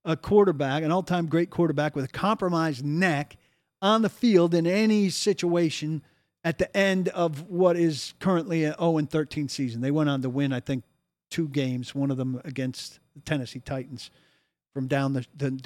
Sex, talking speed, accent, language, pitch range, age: male, 175 wpm, American, English, 135-165 Hz, 50-69